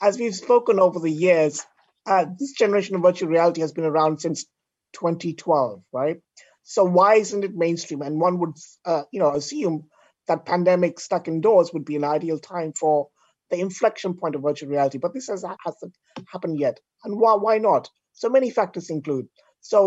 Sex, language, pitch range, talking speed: male, English, 155-185 Hz, 185 wpm